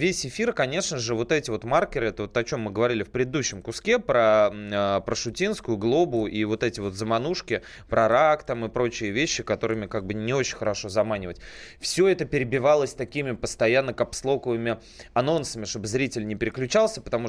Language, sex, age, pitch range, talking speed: Russian, male, 20-39, 110-135 Hz, 180 wpm